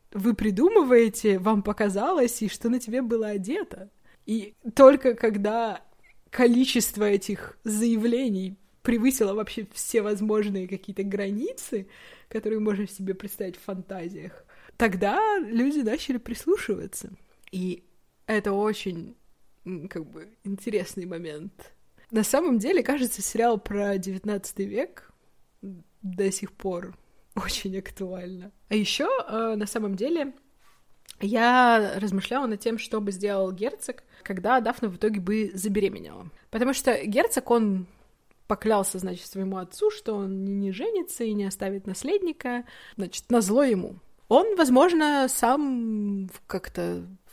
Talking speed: 120 wpm